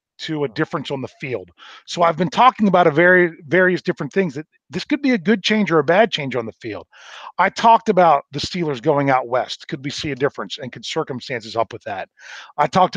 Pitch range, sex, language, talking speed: 140-185 Hz, male, English, 235 wpm